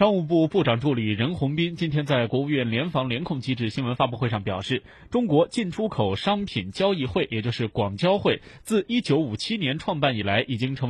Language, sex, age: Chinese, male, 20-39